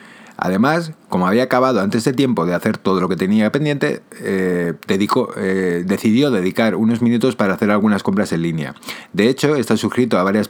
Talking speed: 185 wpm